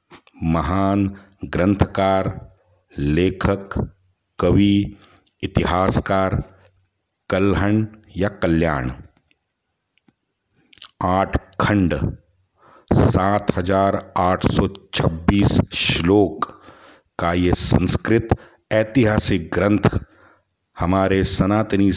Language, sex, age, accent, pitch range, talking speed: Hindi, male, 50-69, native, 85-100 Hz, 65 wpm